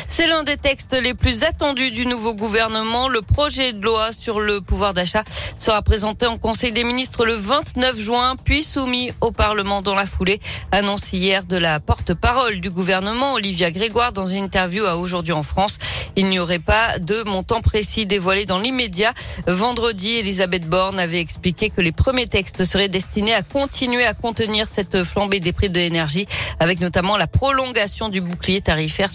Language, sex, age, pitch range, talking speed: French, female, 40-59, 180-225 Hz, 180 wpm